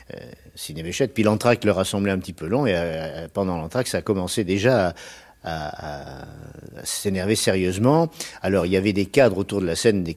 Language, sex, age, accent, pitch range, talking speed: French, male, 50-69, French, 90-115 Hz, 195 wpm